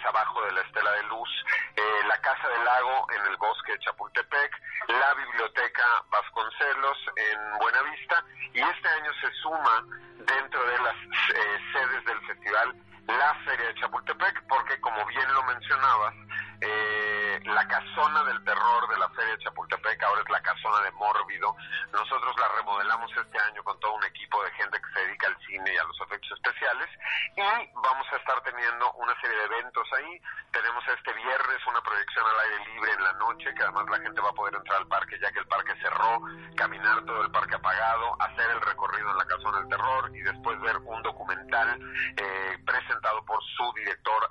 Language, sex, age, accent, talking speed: Spanish, male, 40-59, Mexican, 190 wpm